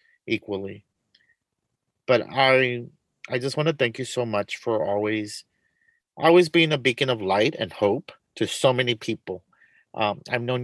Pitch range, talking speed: 110-130 Hz, 160 wpm